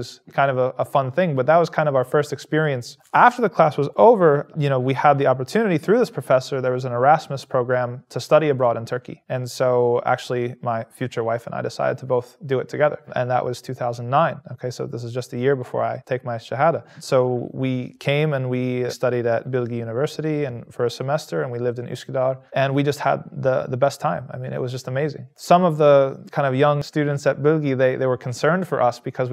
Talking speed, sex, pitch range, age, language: 235 wpm, male, 125-145 Hz, 20-39, English